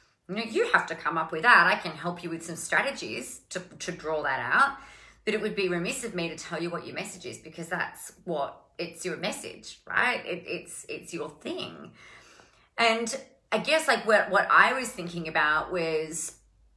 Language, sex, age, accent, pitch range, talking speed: English, female, 30-49, Australian, 160-190 Hz, 210 wpm